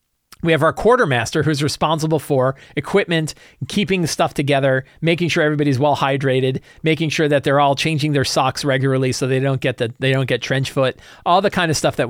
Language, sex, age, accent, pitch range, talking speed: English, male, 40-59, American, 125-160 Hz, 210 wpm